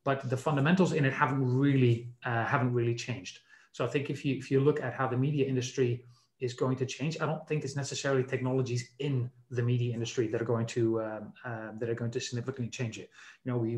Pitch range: 115-135 Hz